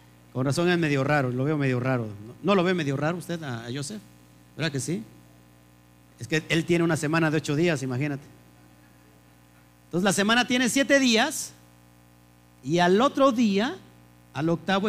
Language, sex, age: Spanish, male, 50-69